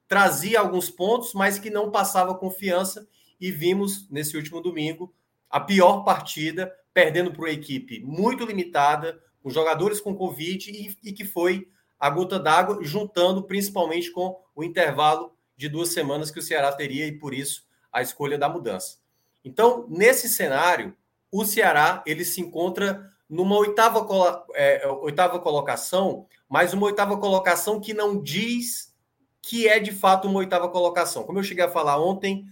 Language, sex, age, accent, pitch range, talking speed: Portuguese, male, 20-39, Brazilian, 150-195 Hz, 155 wpm